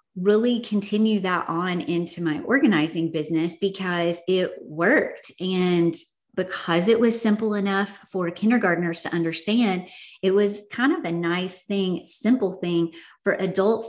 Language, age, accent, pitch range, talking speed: English, 30-49, American, 170-205 Hz, 140 wpm